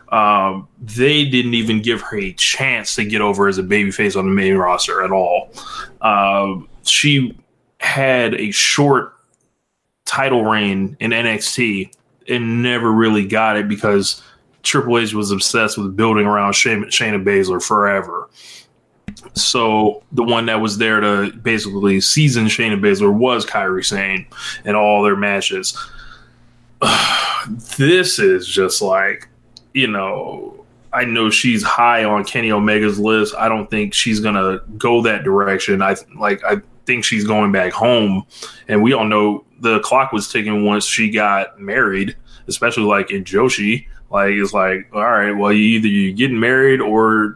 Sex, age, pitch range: male, 20-39, 105-125 Hz